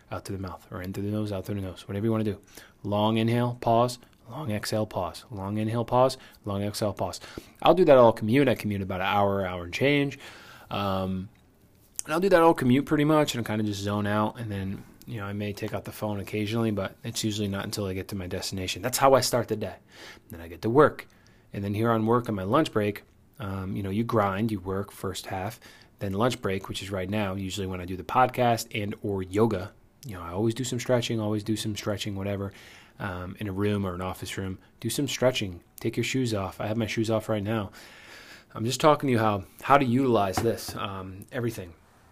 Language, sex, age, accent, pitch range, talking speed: English, male, 30-49, American, 100-120 Hz, 245 wpm